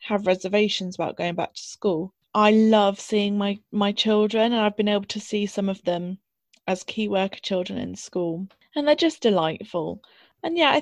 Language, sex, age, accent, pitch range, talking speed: English, female, 20-39, British, 195-235 Hz, 195 wpm